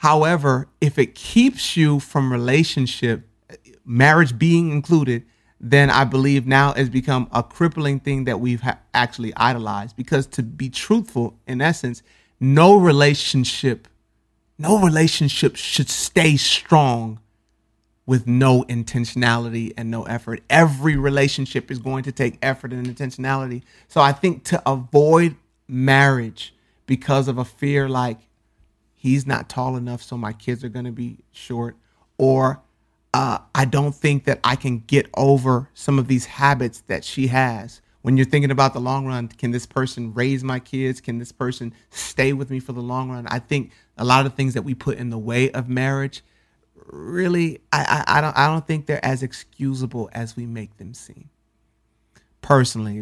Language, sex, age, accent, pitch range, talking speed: English, male, 30-49, American, 120-140 Hz, 165 wpm